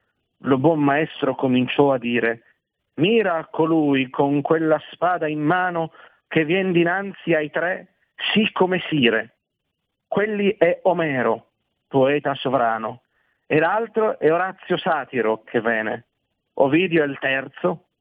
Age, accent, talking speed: 50-69, native, 125 wpm